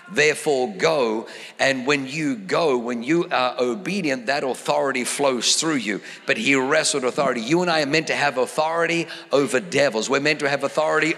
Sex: male